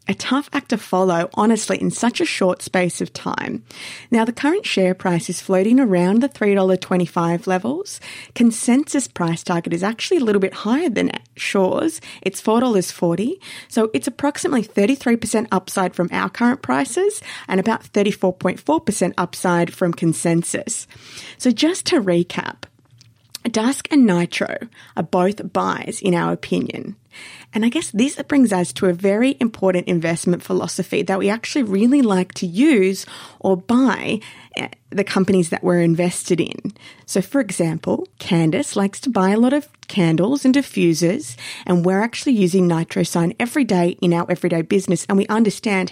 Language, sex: English, female